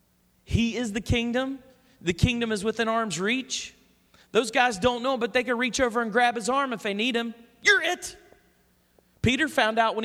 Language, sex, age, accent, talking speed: English, male, 40-59, American, 195 wpm